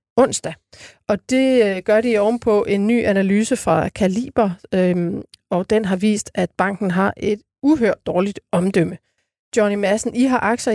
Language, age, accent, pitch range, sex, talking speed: Danish, 30-49, native, 195-230 Hz, female, 155 wpm